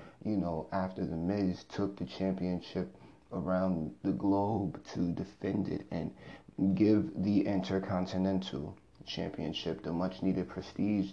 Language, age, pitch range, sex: English, 30-49, 90-100 Hz, male